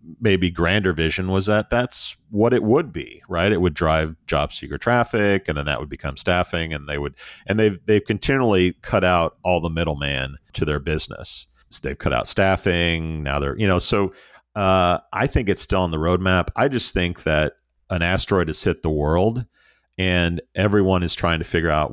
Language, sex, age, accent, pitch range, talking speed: English, male, 50-69, American, 75-95 Hz, 195 wpm